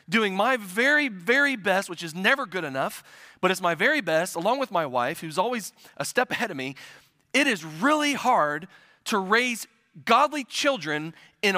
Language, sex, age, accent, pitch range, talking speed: English, male, 30-49, American, 170-235 Hz, 180 wpm